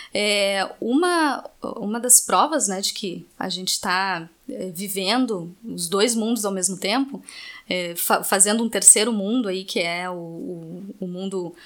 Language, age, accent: Portuguese, 20-39, Brazilian